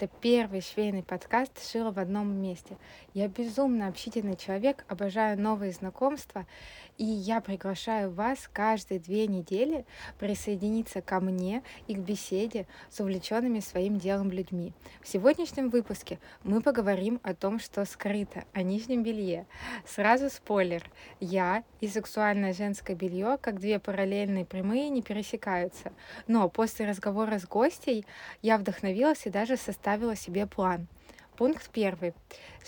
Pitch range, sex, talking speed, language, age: 190-230 Hz, female, 130 wpm, Russian, 20-39